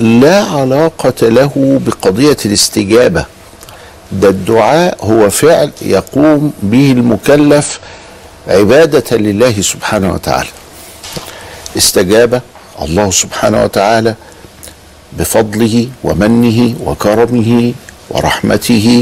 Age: 50-69